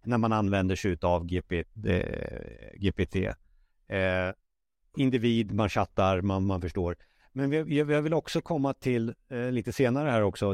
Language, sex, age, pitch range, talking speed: Swedish, male, 60-79, 105-135 Hz, 125 wpm